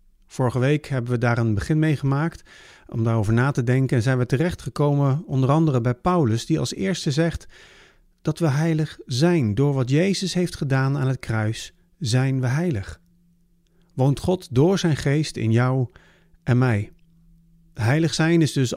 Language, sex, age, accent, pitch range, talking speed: Dutch, male, 50-69, Dutch, 120-160 Hz, 175 wpm